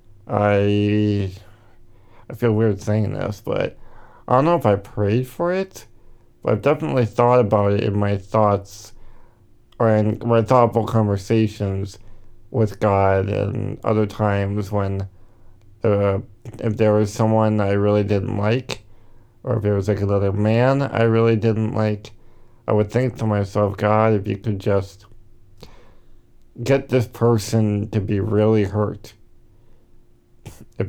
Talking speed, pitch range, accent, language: 140 wpm, 100-115 Hz, American, English